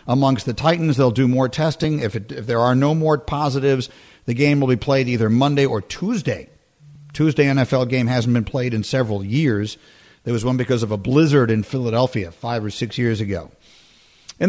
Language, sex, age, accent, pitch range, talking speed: English, male, 50-69, American, 120-155 Hz, 200 wpm